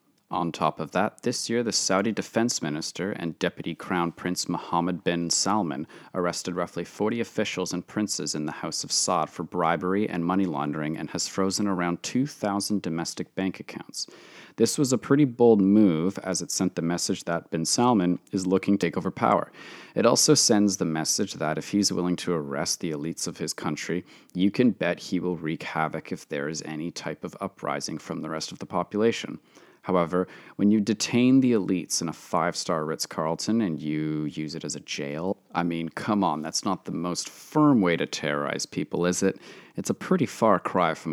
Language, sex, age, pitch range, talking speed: English, male, 30-49, 85-110 Hz, 195 wpm